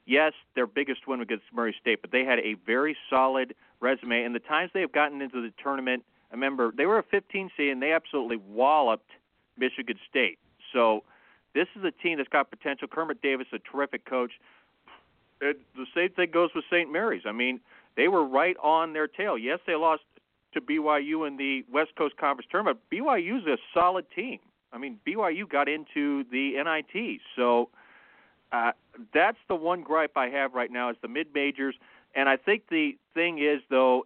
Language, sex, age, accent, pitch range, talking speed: English, male, 40-59, American, 125-155 Hz, 190 wpm